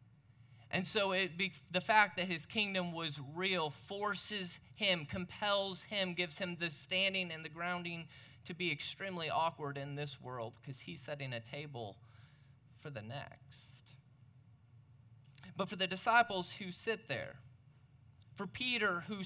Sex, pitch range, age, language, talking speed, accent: male, 130-190 Hz, 30-49, English, 140 wpm, American